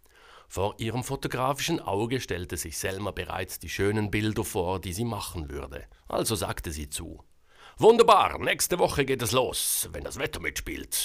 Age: 60-79